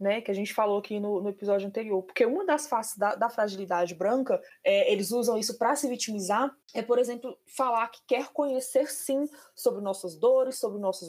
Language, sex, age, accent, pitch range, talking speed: Portuguese, female, 20-39, Brazilian, 200-245 Hz, 200 wpm